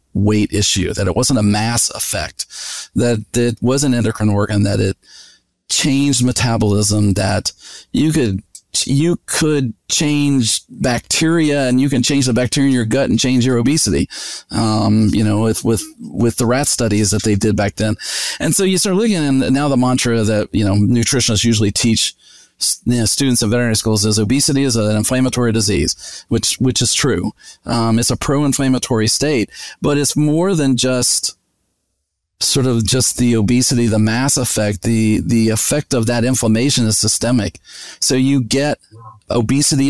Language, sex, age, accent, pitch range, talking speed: English, male, 40-59, American, 110-130 Hz, 170 wpm